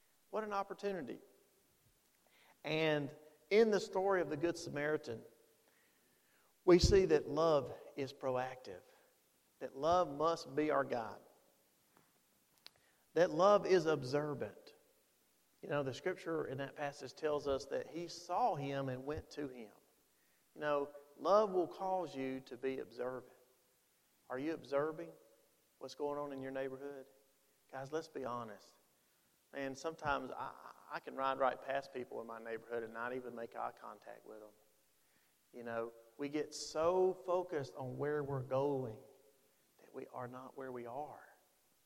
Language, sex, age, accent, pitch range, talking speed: English, male, 40-59, American, 130-170 Hz, 150 wpm